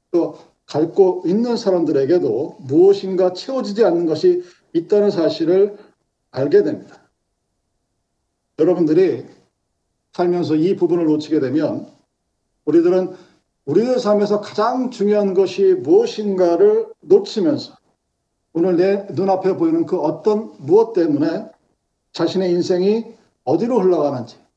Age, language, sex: 50-69, Korean, male